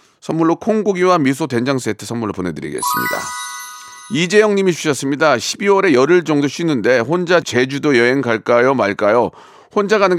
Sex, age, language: male, 40-59, Korean